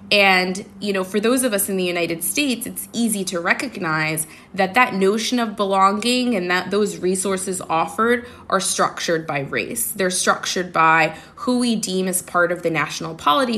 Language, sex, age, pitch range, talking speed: English, female, 20-39, 175-225 Hz, 180 wpm